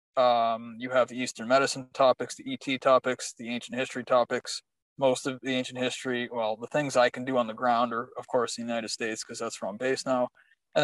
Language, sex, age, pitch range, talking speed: English, male, 20-39, 120-135 Hz, 225 wpm